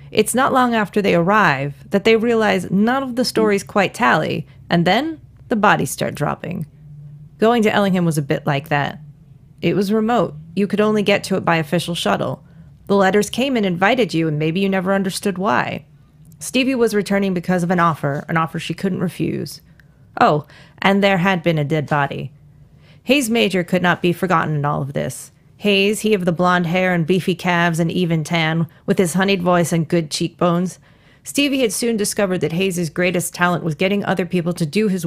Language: English